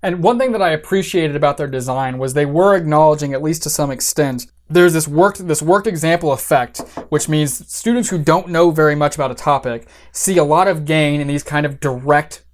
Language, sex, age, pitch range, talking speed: English, male, 20-39, 130-165 Hz, 220 wpm